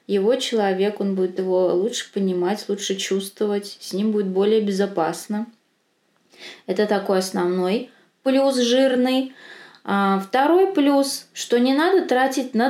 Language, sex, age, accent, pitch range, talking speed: Russian, female, 20-39, native, 195-245 Hz, 125 wpm